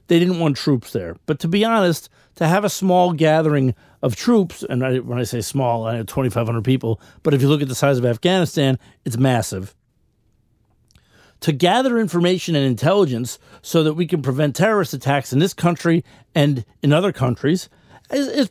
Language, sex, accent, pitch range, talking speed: English, male, American, 120-170 Hz, 185 wpm